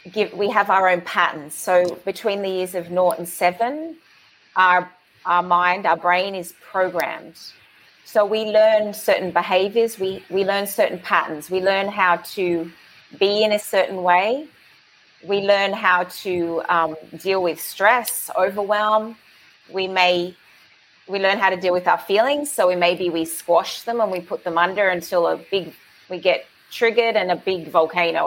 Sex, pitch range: female, 175-210 Hz